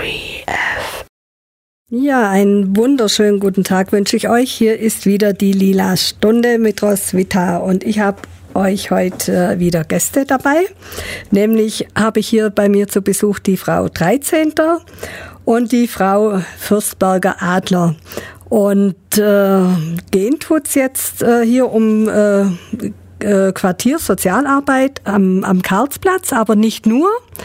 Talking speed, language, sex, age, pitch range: 120 wpm, German, female, 50-69, 190-225 Hz